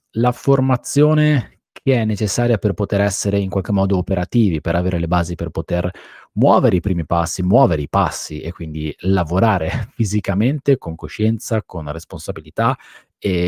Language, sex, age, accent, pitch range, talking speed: Italian, male, 30-49, native, 90-115 Hz, 150 wpm